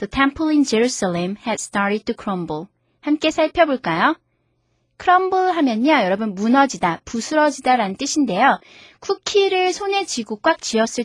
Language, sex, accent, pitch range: Korean, female, native, 210-310 Hz